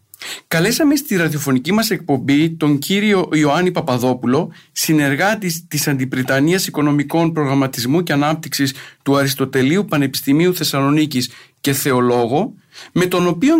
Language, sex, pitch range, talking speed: Greek, male, 135-180 Hz, 110 wpm